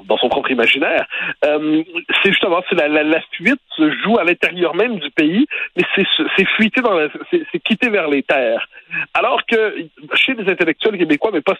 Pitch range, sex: 155-230 Hz, male